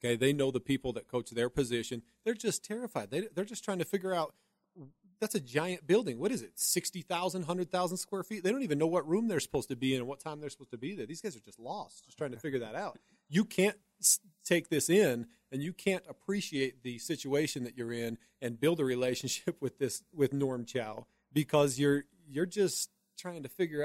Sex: male